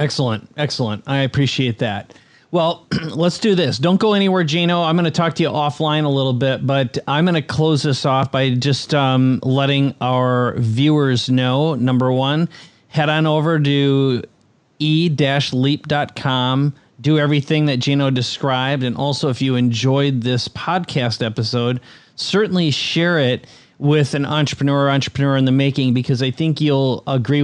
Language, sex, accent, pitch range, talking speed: English, male, American, 125-150 Hz, 160 wpm